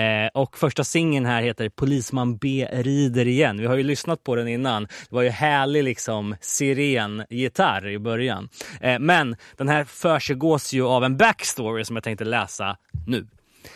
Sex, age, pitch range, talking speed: male, 20-39, 110-140 Hz, 160 wpm